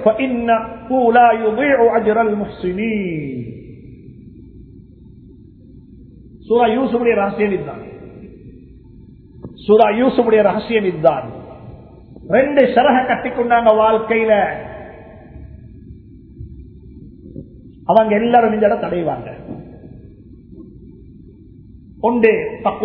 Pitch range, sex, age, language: 195-245 Hz, male, 50-69, Tamil